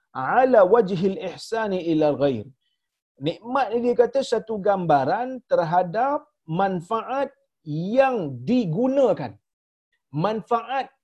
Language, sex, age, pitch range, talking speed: Malayalam, male, 40-59, 155-235 Hz, 100 wpm